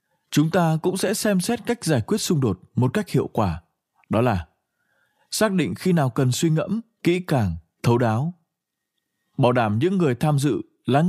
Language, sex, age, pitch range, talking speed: Vietnamese, male, 20-39, 120-175 Hz, 190 wpm